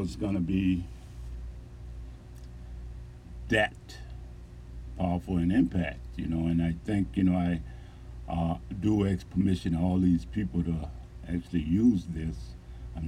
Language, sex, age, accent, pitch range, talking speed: English, male, 60-79, American, 80-95 Hz, 125 wpm